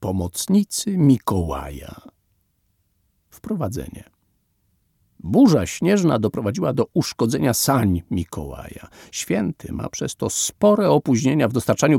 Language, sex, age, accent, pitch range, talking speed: Polish, male, 50-69, native, 95-140 Hz, 90 wpm